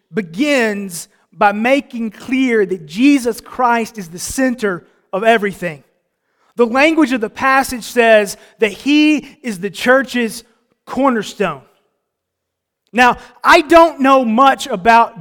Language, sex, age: English, male, 30-49